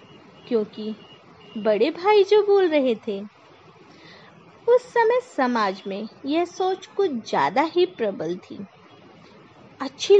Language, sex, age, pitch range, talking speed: Hindi, female, 20-39, 235-390 Hz, 110 wpm